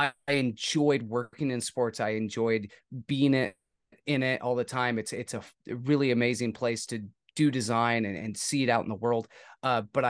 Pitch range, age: 110-135 Hz, 30-49